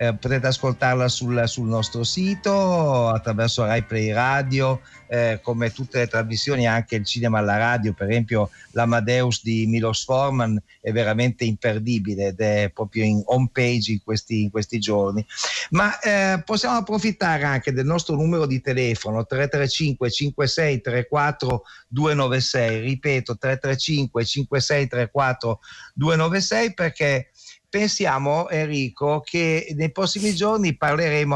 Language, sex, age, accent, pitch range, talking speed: Italian, male, 50-69, native, 120-155 Hz, 125 wpm